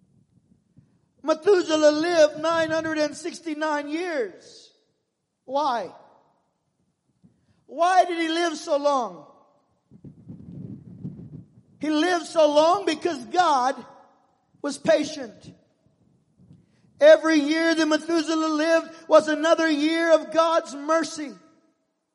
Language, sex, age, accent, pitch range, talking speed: English, male, 50-69, American, 300-330 Hz, 80 wpm